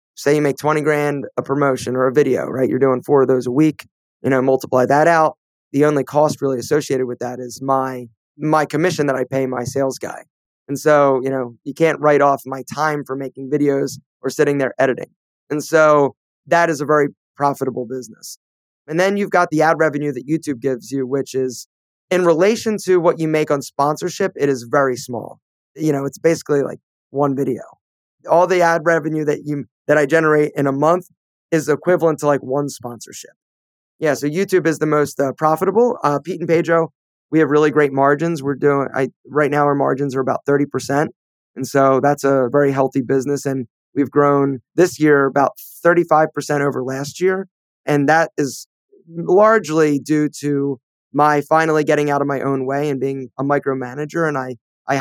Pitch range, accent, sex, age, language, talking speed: 135-155 Hz, American, male, 20-39, English, 195 wpm